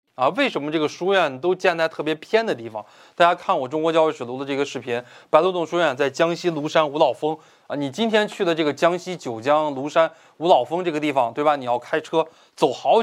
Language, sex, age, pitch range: Chinese, male, 20-39, 135-180 Hz